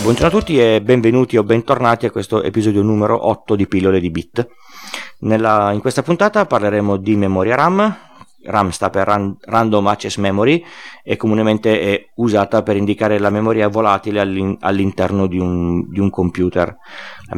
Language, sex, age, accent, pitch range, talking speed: Italian, male, 30-49, native, 95-115 Hz, 150 wpm